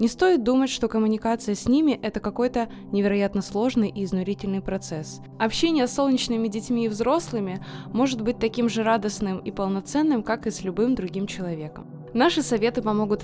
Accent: native